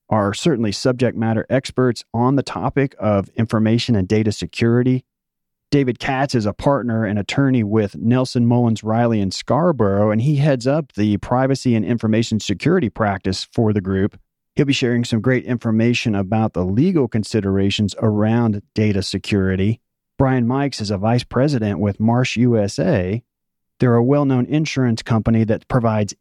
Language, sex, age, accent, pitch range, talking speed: English, male, 40-59, American, 105-130 Hz, 155 wpm